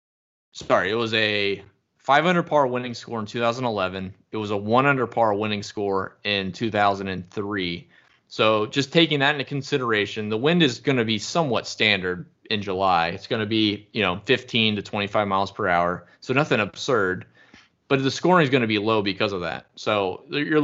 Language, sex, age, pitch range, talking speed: English, male, 20-39, 100-125 Hz, 185 wpm